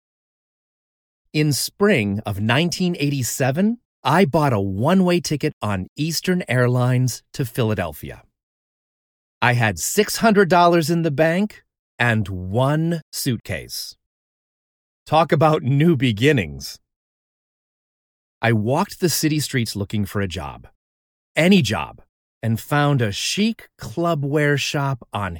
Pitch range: 105-155 Hz